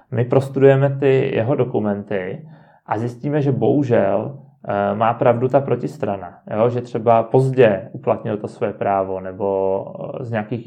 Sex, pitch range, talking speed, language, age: male, 110-140 Hz, 130 wpm, Czech, 30-49